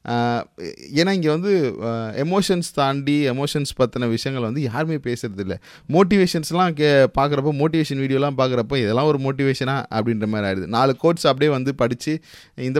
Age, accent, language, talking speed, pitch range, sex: 30-49, native, Tamil, 135 wpm, 115-160 Hz, male